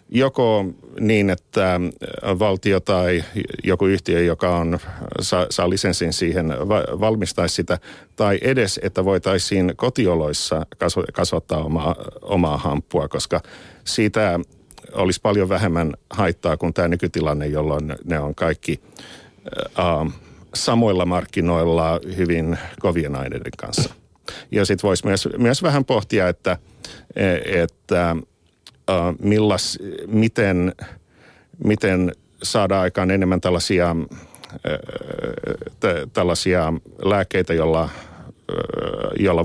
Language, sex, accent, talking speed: Finnish, male, native, 95 wpm